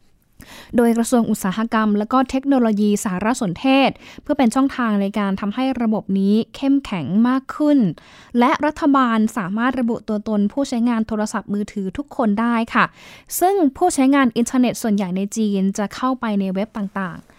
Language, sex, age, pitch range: Thai, female, 10-29, 210-260 Hz